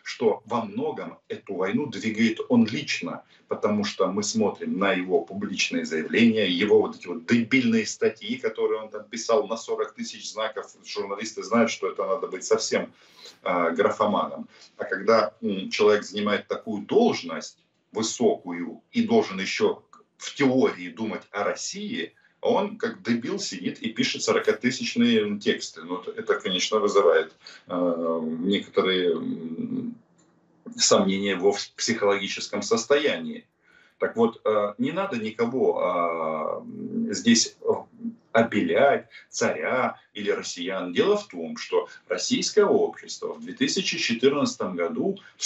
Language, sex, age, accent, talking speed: Russian, male, 40-59, native, 125 wpm